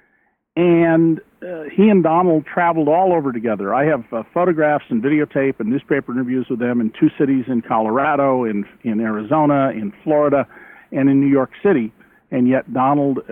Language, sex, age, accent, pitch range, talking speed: English, male, 50-69, American, 125-155 Hz, 170 wpm